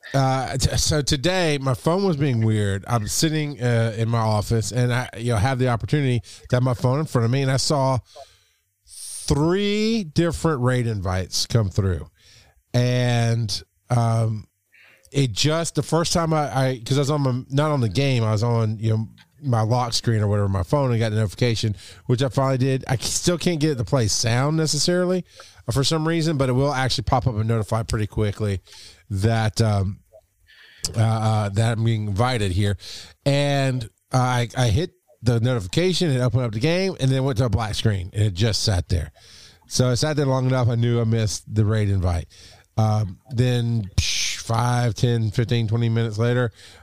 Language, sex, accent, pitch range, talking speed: English, male, American, 105-135 Hz, 190 wpm